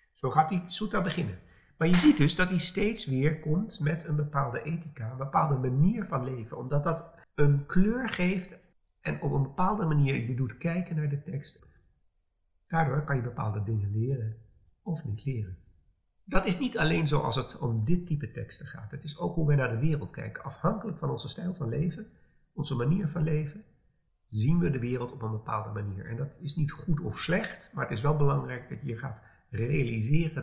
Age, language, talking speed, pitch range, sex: 50-69, Dutch, 205 wpm, 115-160 Hz, male